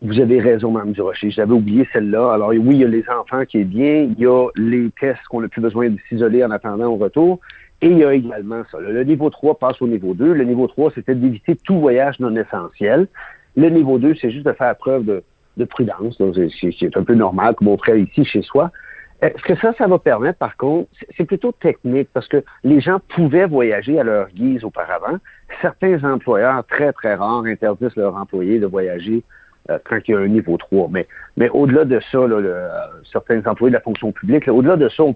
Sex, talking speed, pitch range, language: male, 230 wpm, 115-150 Hz, French